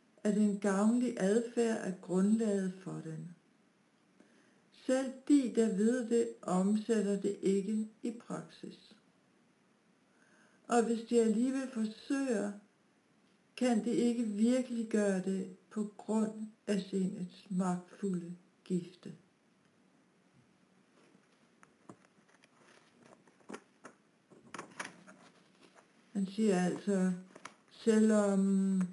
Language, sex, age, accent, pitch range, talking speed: Danish, female, 60-79, native, 190-235 Hz, 80 wpm